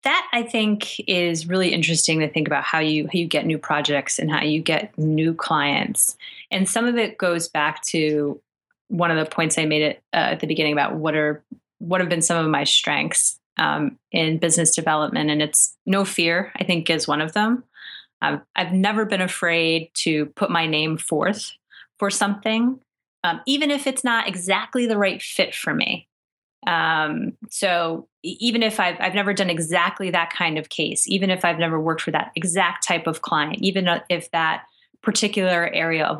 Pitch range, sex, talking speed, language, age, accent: 160-200 Hz, female, 195 wpm, English, 30-49, American